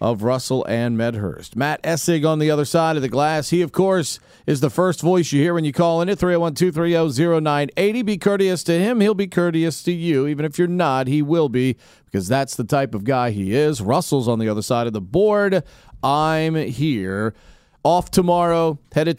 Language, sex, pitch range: English, male, 125-175 Hz